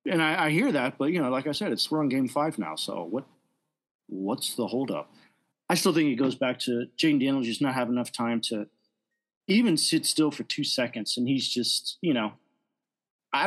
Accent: American